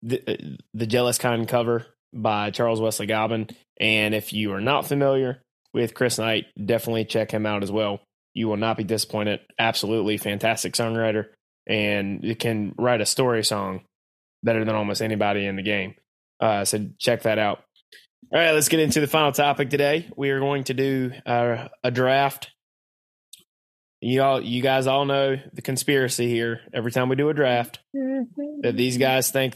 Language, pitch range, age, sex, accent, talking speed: English, 110-135 Hz, 20-39, male, American, 175 wpm